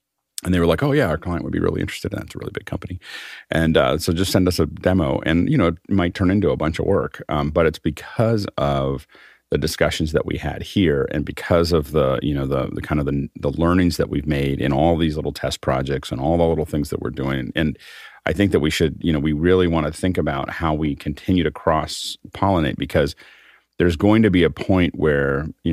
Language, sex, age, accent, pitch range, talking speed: English, male, 40-59, American, 70-85 Hz, 250 wpm